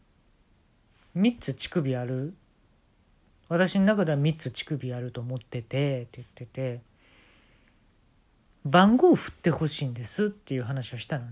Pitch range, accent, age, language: 100-165 Hz, native, 40-59, Japanese